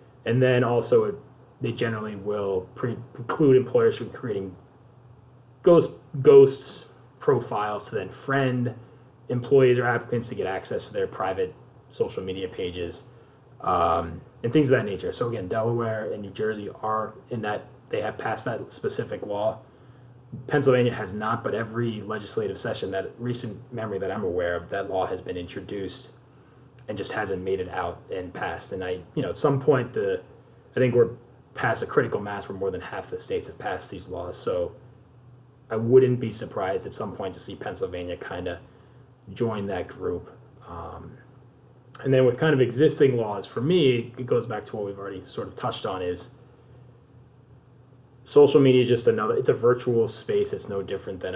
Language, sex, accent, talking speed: English, male, American, 180 wpm